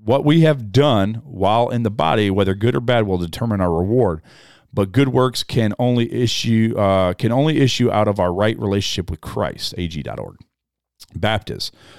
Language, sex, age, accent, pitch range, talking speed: English, male, 40-59, American, 85-115 Hz, 175 wpm